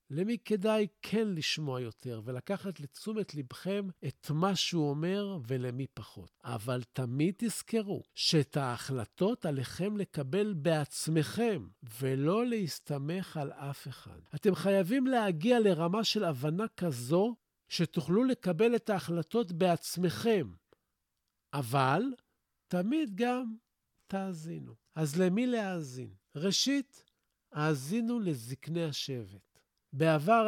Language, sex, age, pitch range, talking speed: Hebrew, male, 50-69, 135-190 Hz, 100 wpm